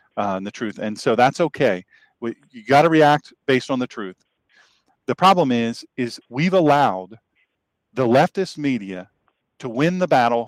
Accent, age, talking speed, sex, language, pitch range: American, 40-59, 160 wpm, male, English, 115-165 Hz